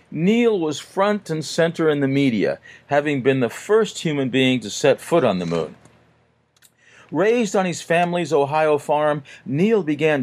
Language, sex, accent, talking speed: English, male, American, 165 wpm